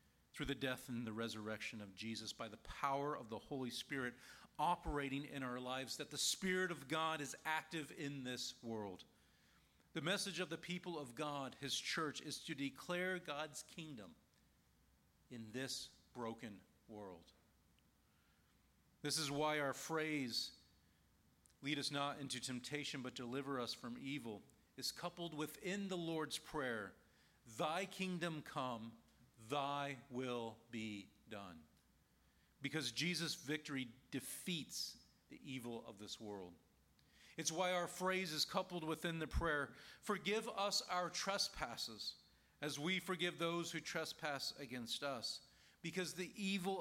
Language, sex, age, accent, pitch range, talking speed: English, male, 40-59, American, 120-165 Hz, 135 wpm